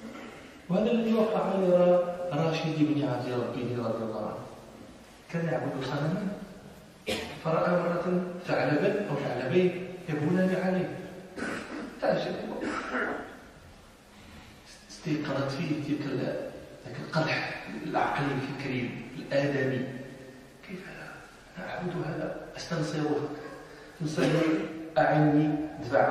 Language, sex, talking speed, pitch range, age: Arabic, male, 85 wpm, 130-175 Hz, 40-59